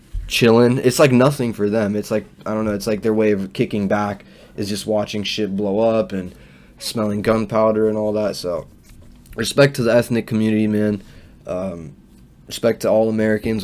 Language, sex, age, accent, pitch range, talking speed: English, male, 10-29, American, 105-120 Hz, 185 wpm